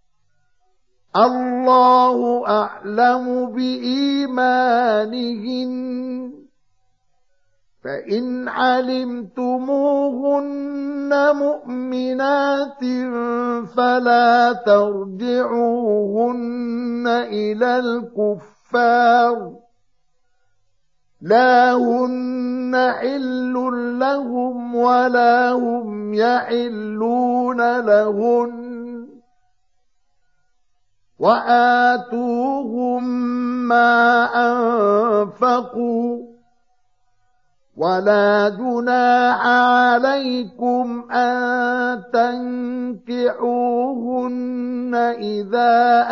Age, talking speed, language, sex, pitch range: 50-69, 35 wpm, Arabic, male, 235-250 Hz